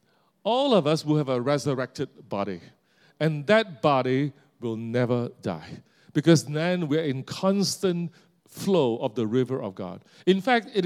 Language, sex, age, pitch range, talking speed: English, male, 40-59, 150-210 Hz, 155 wpm